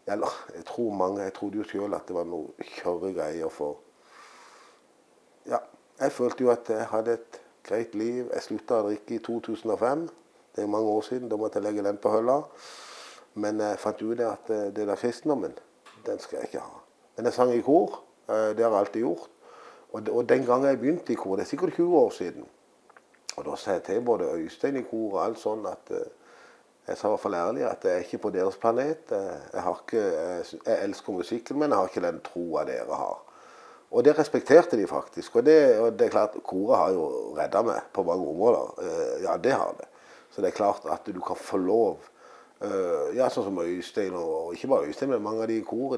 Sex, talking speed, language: male, 215 wpm, English